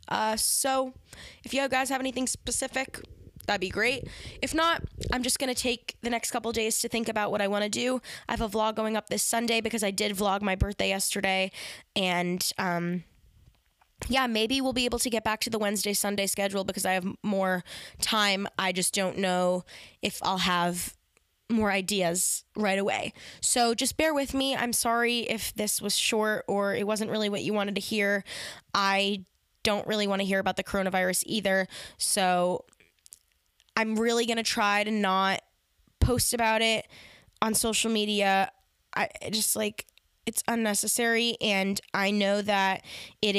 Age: 10-29